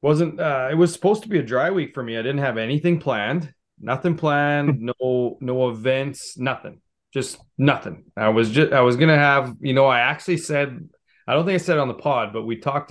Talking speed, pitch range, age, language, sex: 230 wpm, 115-145 Hz, 20-39, English, male